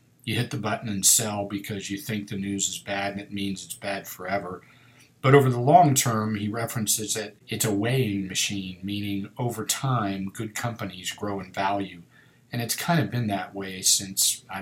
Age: 40-59